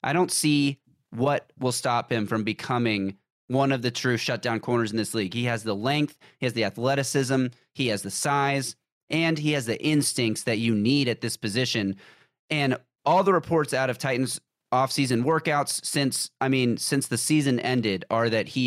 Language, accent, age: English, American, 30-49